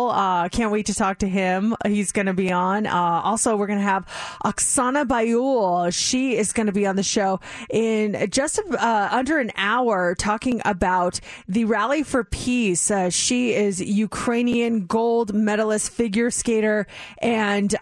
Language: English